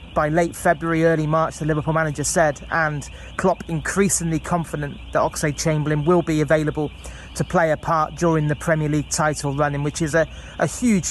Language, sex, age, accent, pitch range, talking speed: English, male, 30-49, British, 150-165 Hz, 185 wpm